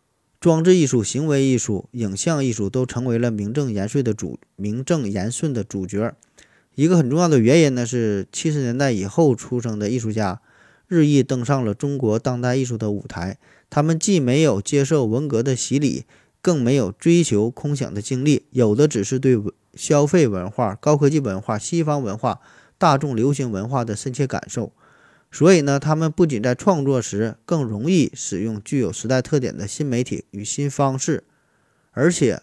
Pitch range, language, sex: 110-145 Hz, Chinese, male